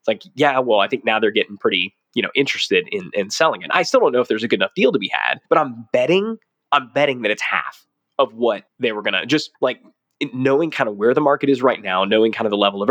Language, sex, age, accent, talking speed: English, male, 20-39, American, 275 wpm